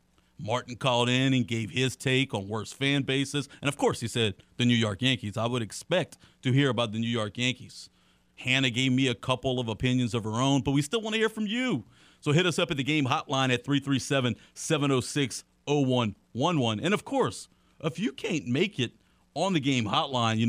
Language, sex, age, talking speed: English, male, 40-59, 210 wpm